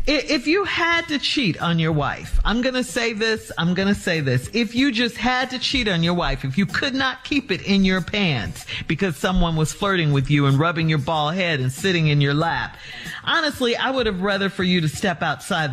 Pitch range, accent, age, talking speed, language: 150-250 Hz, American, 50-69, 235 wpm, English